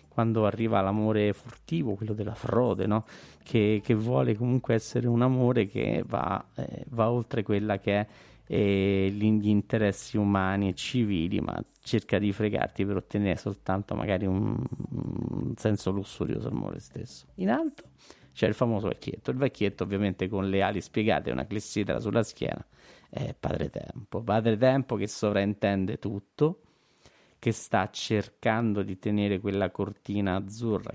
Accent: native